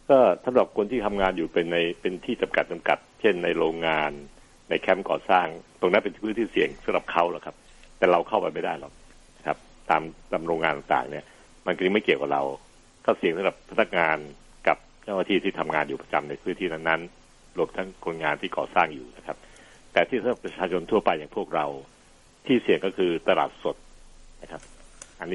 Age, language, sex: 60-79, Thai, male